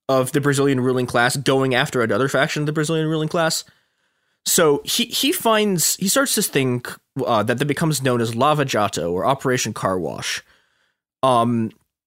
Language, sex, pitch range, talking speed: English, male, 125-180 Hz, 175 wpm